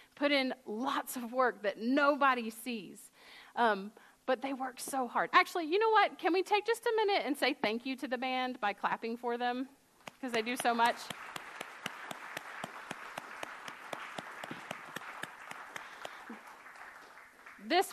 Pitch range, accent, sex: 200-270 Hz, American, female